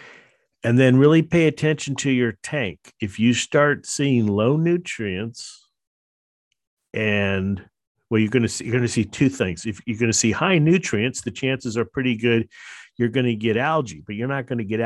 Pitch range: 100-125 Hz